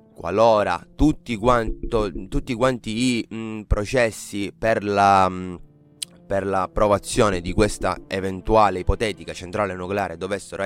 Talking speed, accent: 115 wpm, native